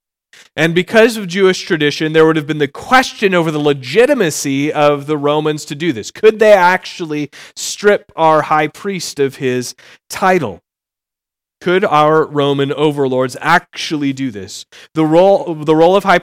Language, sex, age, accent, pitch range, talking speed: English, male, 30-49, American, 135-175 Hz, 160 wpm